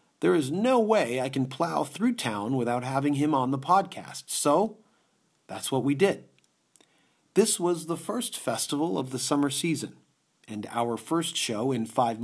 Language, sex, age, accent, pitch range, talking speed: English, male, 40-59, American, 120-160 Hz, 170 wpm